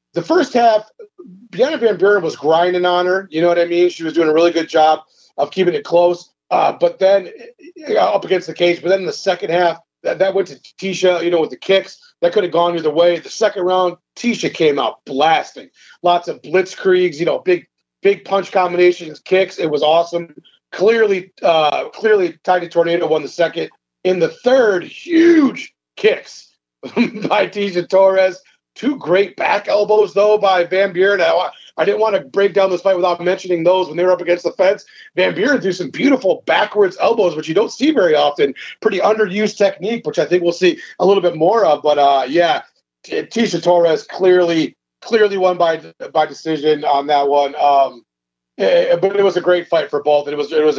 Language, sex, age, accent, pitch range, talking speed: English, male, 40-59, American, 165-215 Hz, 205 wpm